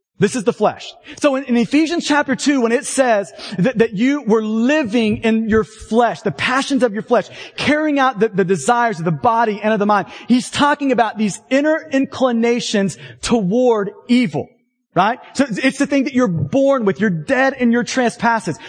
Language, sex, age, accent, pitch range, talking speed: English, male, 30-49, American, 215-270 Hz, 195 wpm